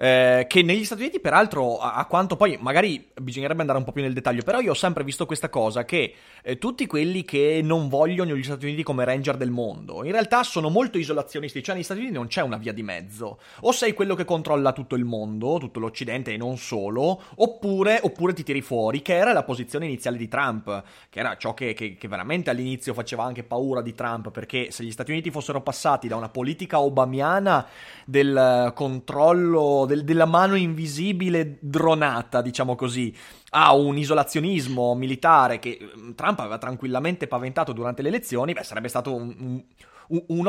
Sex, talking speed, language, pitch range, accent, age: male, 190 wpm, Italian, 120-170 Hz, native, 30-49